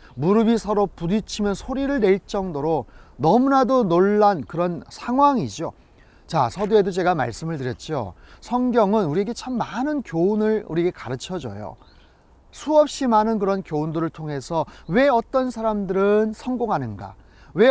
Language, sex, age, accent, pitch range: Korean, male, 30-49, native, 150-220 Hz